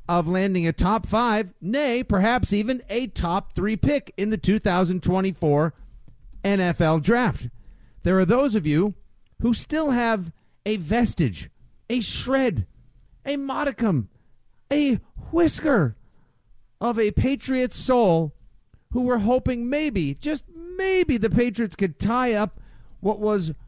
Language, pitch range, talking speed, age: English, 145-215 Hz, 125 wpm, 50-69